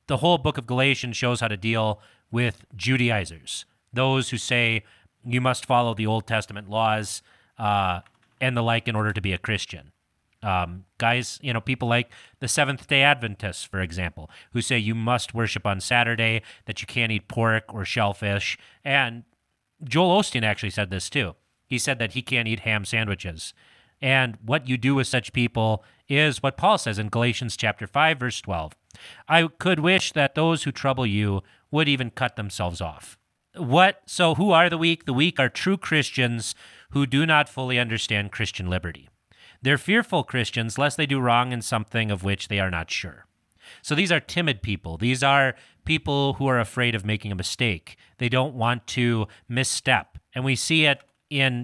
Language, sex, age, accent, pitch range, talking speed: English, male, 30-49, American, 105-135 Hz, 185 wpm